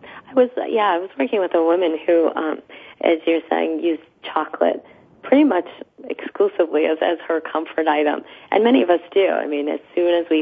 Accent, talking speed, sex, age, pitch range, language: American, 205 wpm, female, 30-49, 150-185 Hz, English